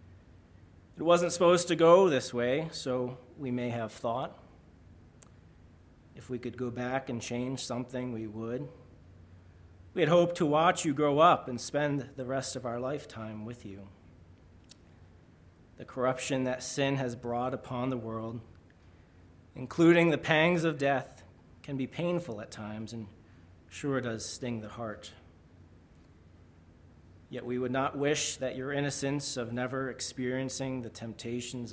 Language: English